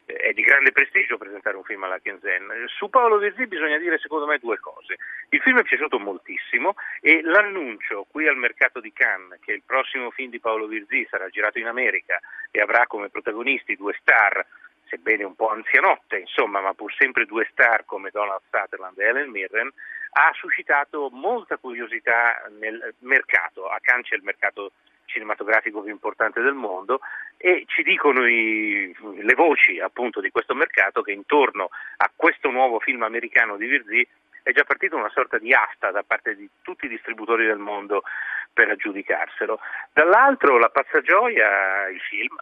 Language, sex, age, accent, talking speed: Italian, male, 40-59, native, 170 wpm